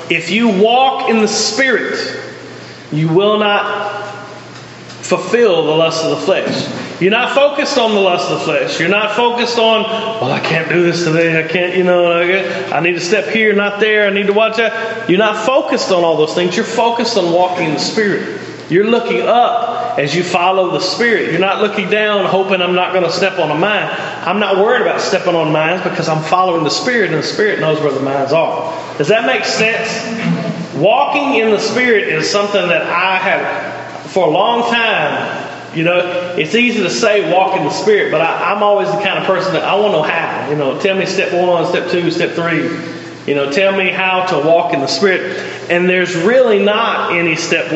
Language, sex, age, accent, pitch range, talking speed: English, male, 30-49, American, 165-215 Hz, 215 wpm